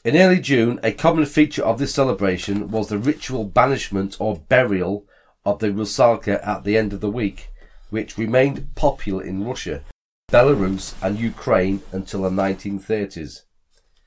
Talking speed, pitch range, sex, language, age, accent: 150 wpm, 95-115 Hz, male, English, 40-59, British